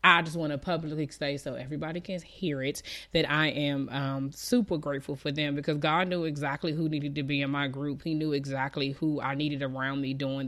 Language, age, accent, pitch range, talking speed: English, 20-39, American, 135-160 Hz, 225 wpm